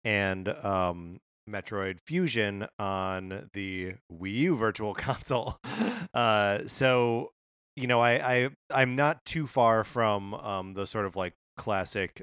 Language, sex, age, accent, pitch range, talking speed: English, male, 20-39, American, 95-115 Hz, 130 wpm